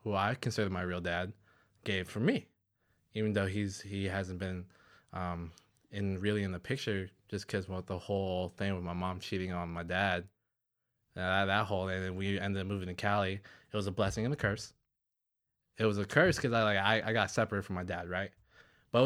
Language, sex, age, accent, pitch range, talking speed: English, male, 20-39, American, 100-120 Hz, 215 wpm